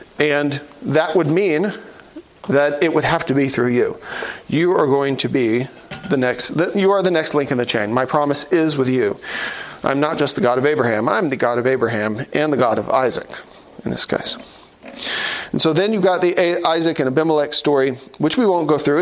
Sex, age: male, 40-59